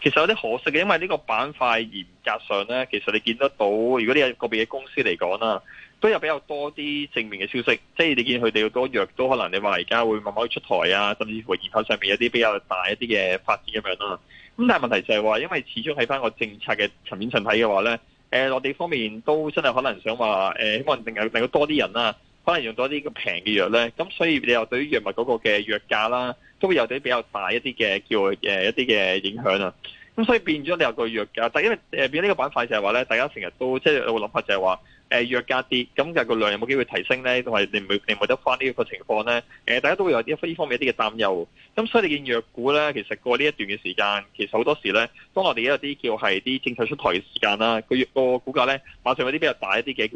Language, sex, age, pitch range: Chinese, male, 20-39, 110-145 Hz